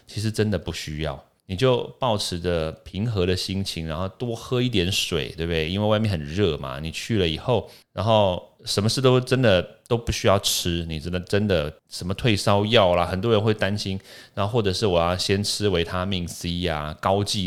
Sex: male